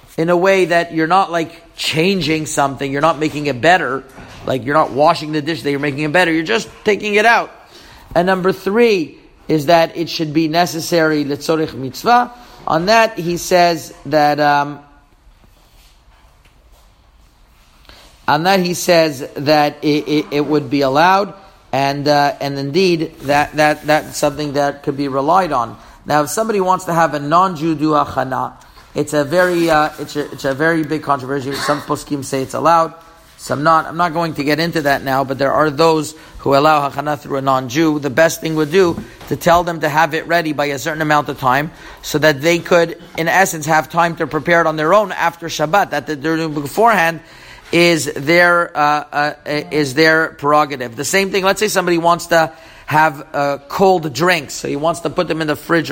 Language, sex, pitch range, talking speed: English, male, 145-170 Hz, 200 wpm